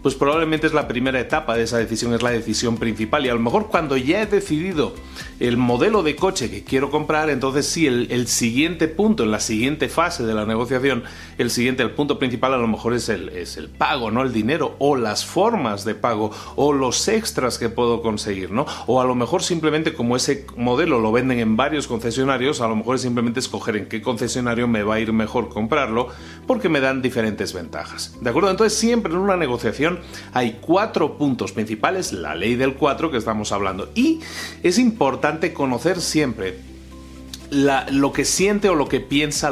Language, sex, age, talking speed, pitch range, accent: Spanish, male, 40-59, 200 wpm, 110-150 Hz, Mexican